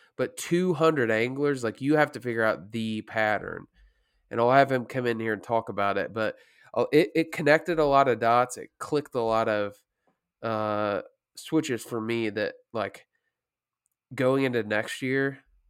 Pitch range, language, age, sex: 105-130 Hz, English, 20-39, male